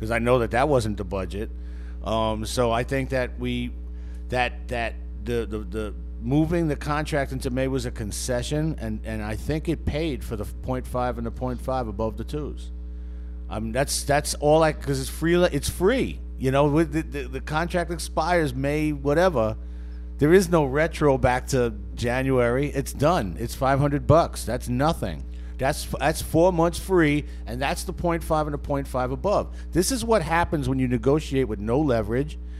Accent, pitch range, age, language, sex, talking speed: American, 105-145 Hz, 50-69, English, male, 185 wpm